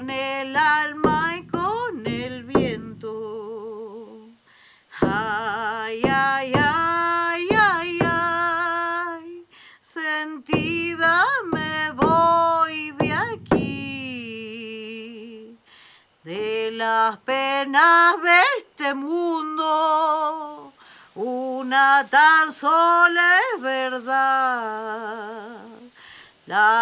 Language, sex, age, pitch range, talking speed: Spanish, female, 30-49, 235-335 Hz, 65 wpm